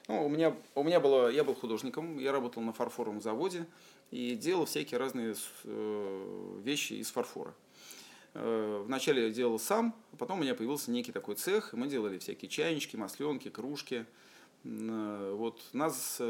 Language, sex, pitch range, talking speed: Russian, male, 110-145 Hz, 160 wpm